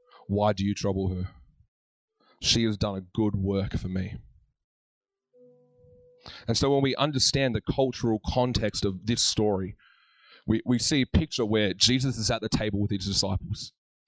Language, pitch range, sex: English, 95-125 Hz, male